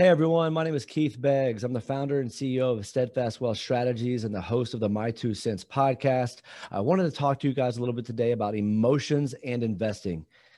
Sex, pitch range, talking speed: male, 110-140 Hz, 225 wpm